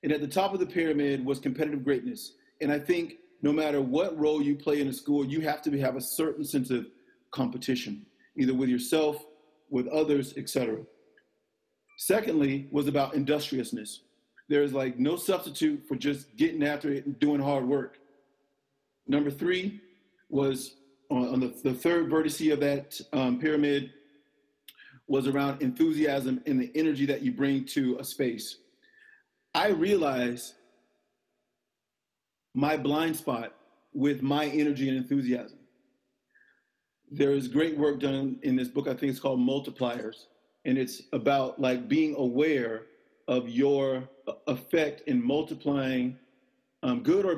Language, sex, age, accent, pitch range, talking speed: English, male, 40-59, American, 130-155 Hz, 150 wpm